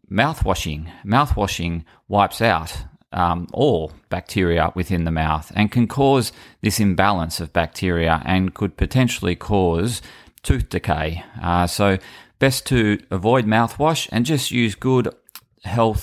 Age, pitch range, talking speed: 30-49, 90-110 Hz, 125 wpm